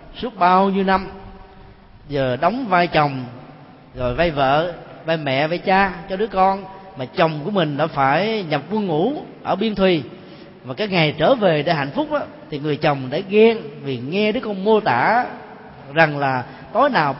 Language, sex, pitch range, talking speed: Vietnamese, male, 140-205 Hz, 190 wpm